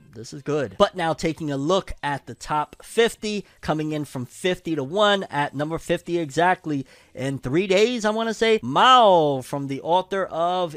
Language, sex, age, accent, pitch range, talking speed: English, male, 30-49, American, 125-170 Hz, 190 wpm